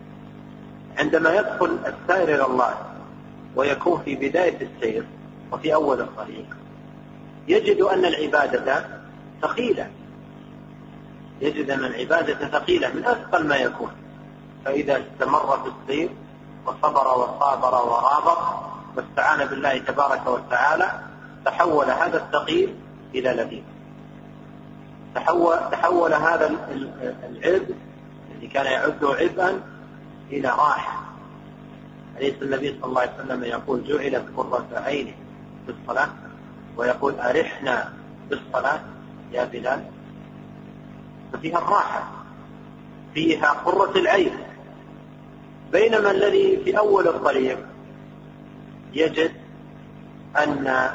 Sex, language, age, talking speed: male, Arabic, 40-59, 95 wpm